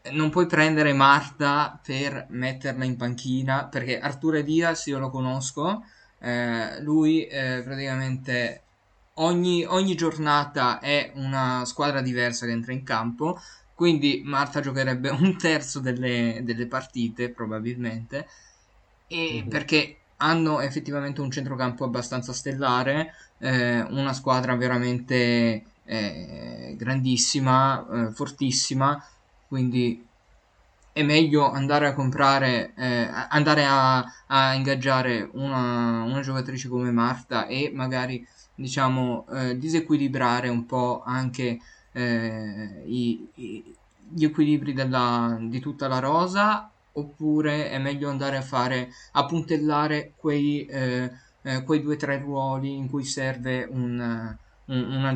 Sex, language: male, Italian